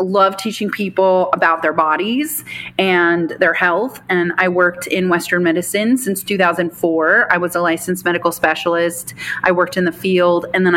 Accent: American